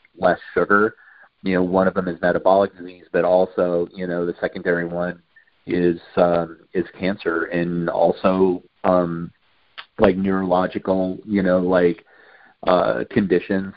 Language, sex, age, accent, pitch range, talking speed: English, male, 40-59, American, 90-100 Hz, 135 wpm